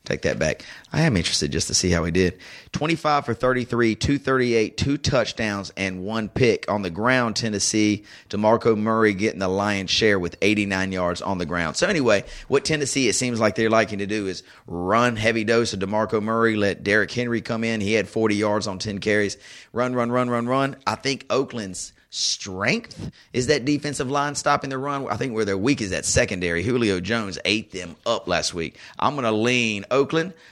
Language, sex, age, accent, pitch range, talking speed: English, male, 30-49, American, 100-135 Hz, 205 wpm